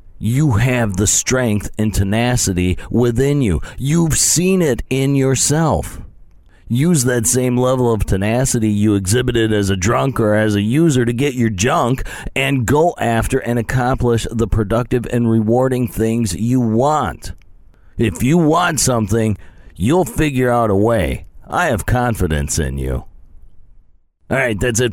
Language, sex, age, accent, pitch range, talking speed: English, male, 40-59, American, 95-125 Hz, 150 wpm